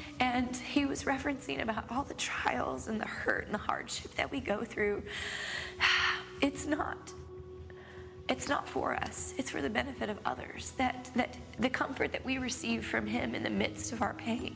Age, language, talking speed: 20-39, English, 185 wpm